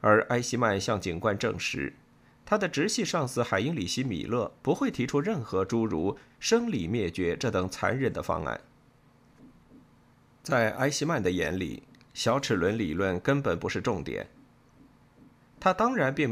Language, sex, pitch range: Chinese, male, 105-140 Hz